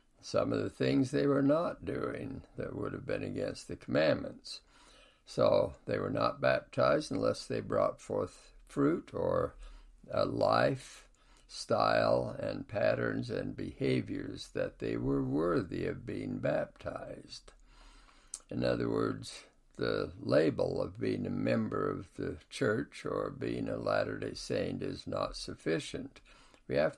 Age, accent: 60-79, American